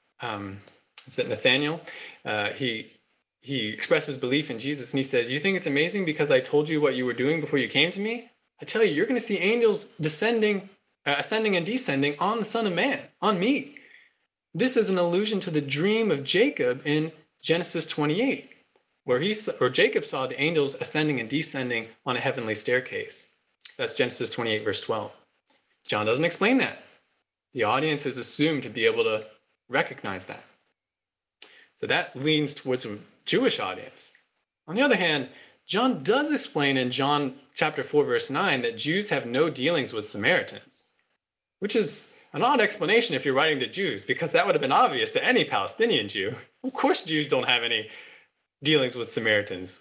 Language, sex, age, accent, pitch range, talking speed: English, male, 20-39, American, 145-245 Hz, 185 wpm